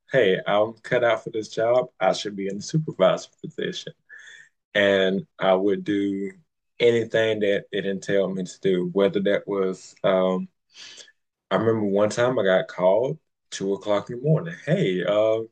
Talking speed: 165 wpm